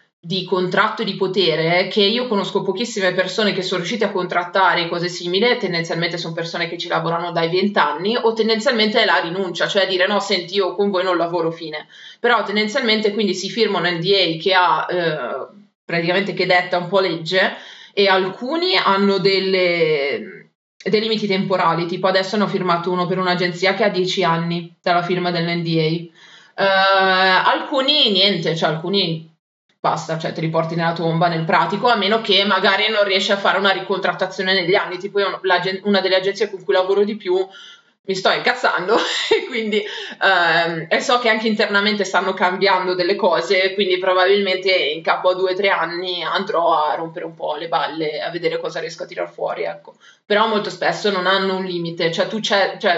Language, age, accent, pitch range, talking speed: Italian, 20-39, native, 175-200 Hz, 185 wpm